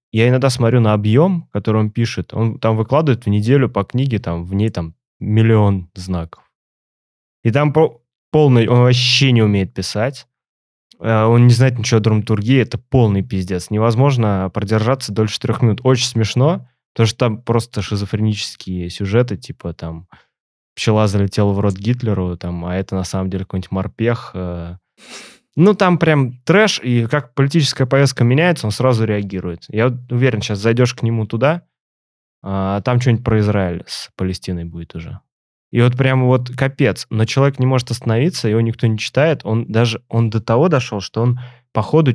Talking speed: 210 wpm